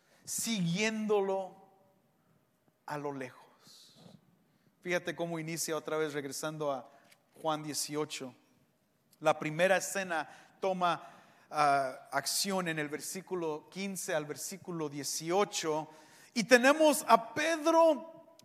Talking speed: 100 wpm